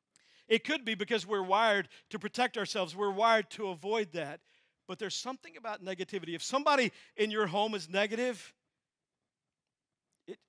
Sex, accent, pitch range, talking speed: male, American, 195-255 Hz, 155 wpm